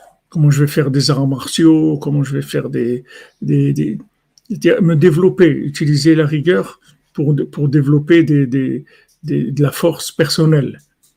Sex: male